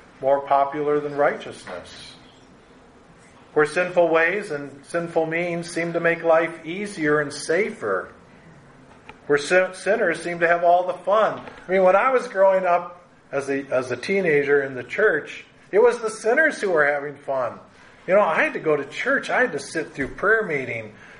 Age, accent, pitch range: 50-69, American, 135-175 Hz